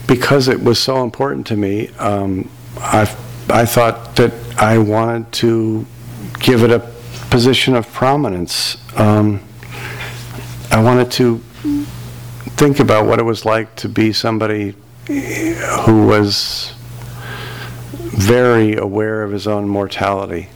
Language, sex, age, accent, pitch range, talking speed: English, male, 50-69, American, 100-120 Hz, 120 wpm